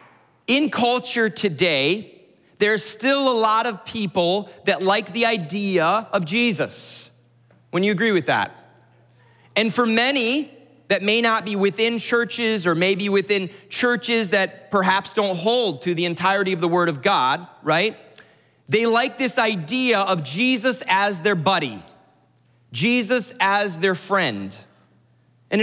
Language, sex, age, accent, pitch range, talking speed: English, male, 30-49, American, 175-225 Hz, 140 wpm